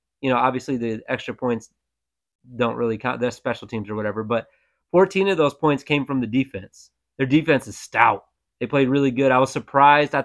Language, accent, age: English, American, 30-49